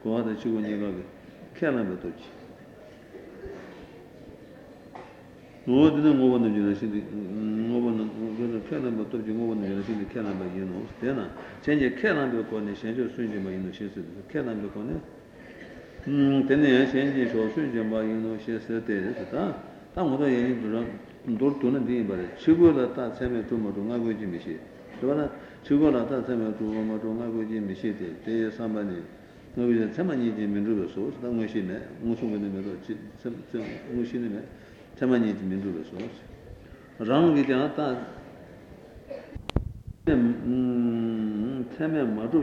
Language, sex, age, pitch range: Italian, male, 60-79, 105-125 Hz